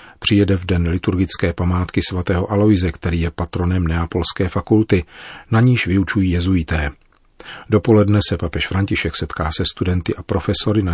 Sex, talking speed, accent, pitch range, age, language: male, 145 wpm, native, 85-100 Hz, 40-59, Czech